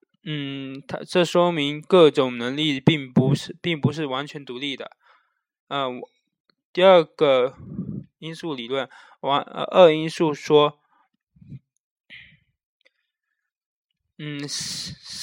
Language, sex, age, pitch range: Chinese, male, 20-39, 140-175 Hz